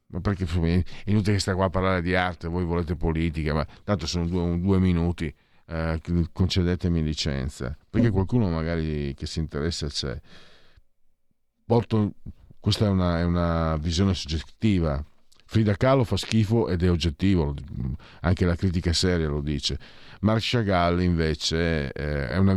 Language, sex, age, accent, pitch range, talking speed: Italian, male, 50-69, native, 80-105 Hz, 150 wpm